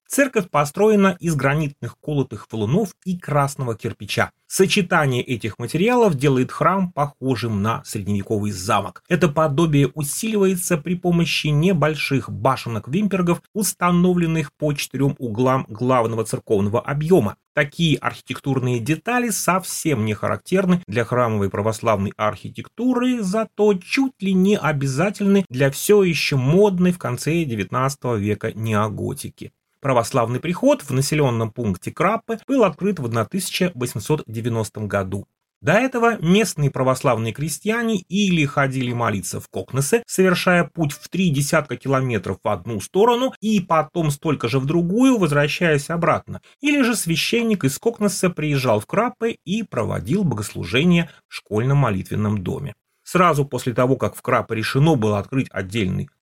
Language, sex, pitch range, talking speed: Russian, male, 120-185 Hz, 125 wpm